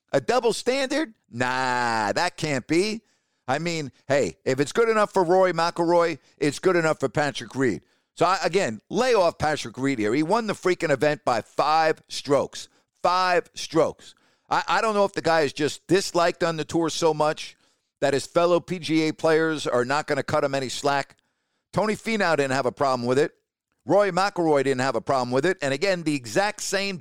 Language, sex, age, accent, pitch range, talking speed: English, male, 50-69, American, 145-195 Hz, 200 wpm